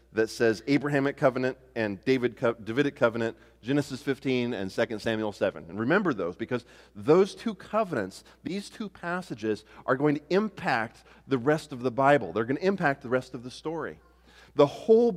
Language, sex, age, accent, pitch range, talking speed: English, male, 40-59, American, 110-165 Hz, 170 wpm